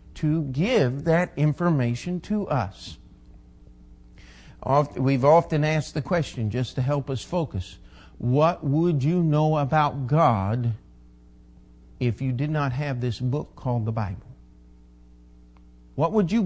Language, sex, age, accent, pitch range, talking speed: English, male, 50-69, American, 115-165 Hz, 130 wpm